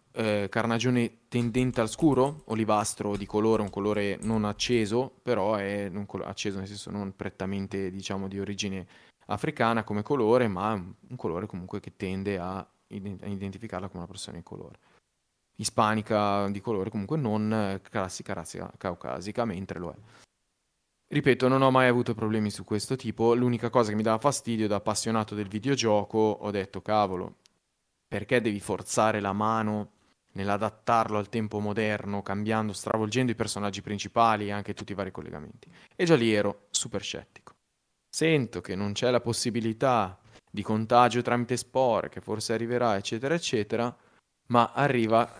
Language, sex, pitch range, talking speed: Italian, male, 100-115 Hz, 155 wpm